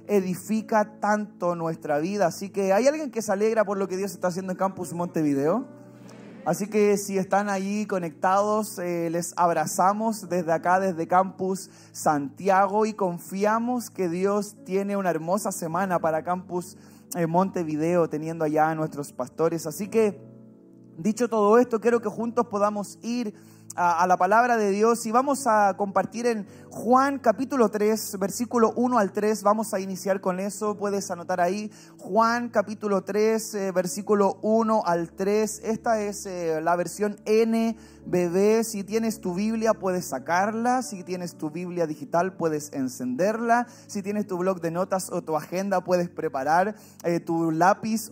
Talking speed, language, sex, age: 160 wpm, Spanish, male, 30-49